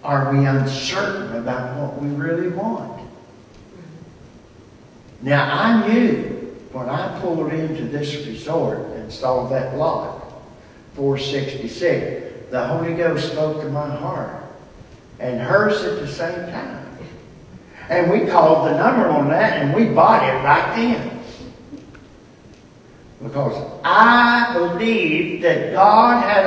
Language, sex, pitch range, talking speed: English, male, 145-200 Hz, 120 wpm